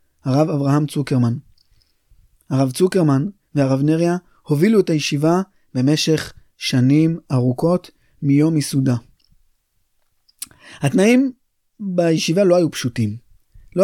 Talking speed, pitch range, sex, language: 90 wpm, 140-185 Hz, male, Hebrew